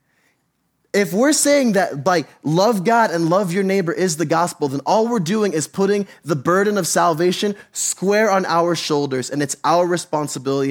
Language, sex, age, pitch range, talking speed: English, male, 20-39, 125-175 Hz, 180 wpm